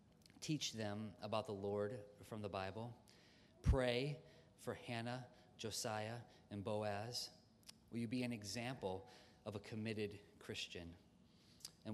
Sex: male